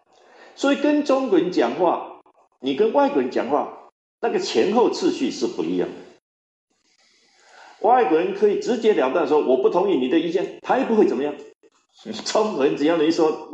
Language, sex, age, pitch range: Chinese, male, 50-69, 310-390 Hz